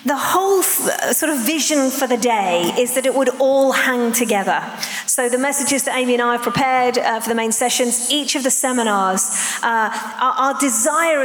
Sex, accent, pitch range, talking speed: female, British, 245-290 Hz, 195 wpm